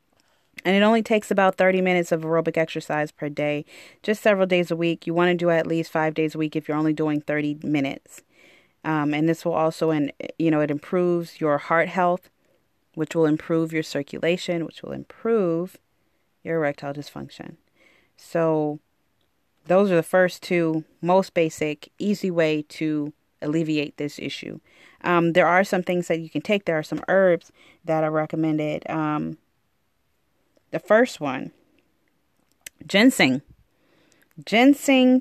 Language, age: English, 30-49